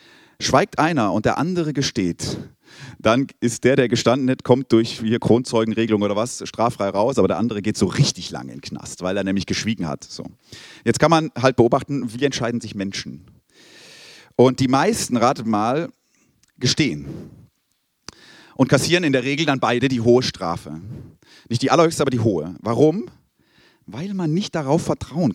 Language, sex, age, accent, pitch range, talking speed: German, male, 40-59, German, 115-155 Hz, 175 wpm